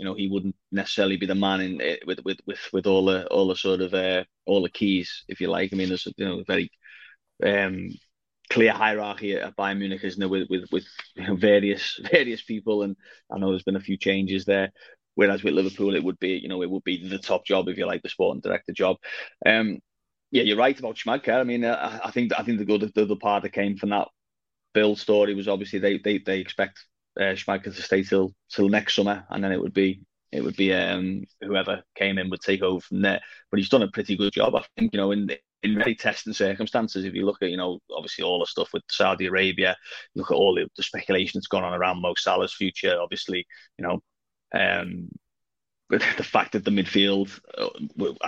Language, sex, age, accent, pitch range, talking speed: English, male, 20-39, British, 95-100 Hz, 235 wpm